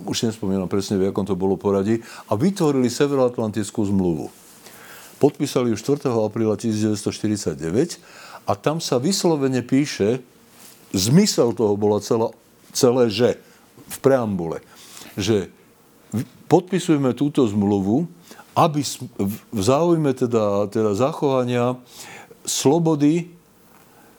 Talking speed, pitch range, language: 100 wpm, 105-135 Hz, Slovak